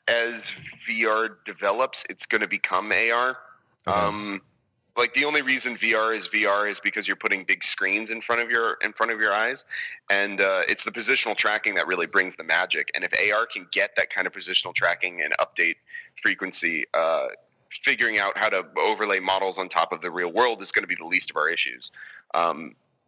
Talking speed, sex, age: 205 wpm, male, 30-49